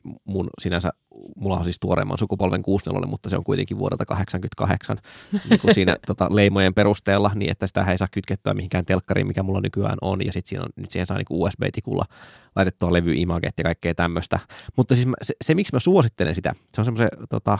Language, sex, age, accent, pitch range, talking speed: Finnish, male, 20-39, native, 95-125 Hz, 200 wpm